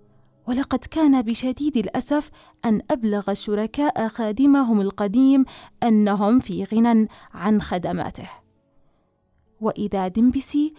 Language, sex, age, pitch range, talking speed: Arabic, female, 30-49, 205-270 Hz, 90 wpm